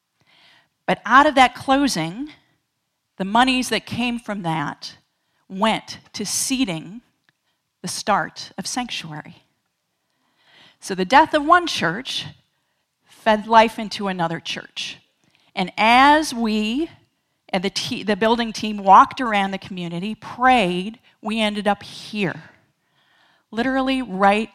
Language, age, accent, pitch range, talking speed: English, 40-59, American, 180-240 Hz, 120 wpm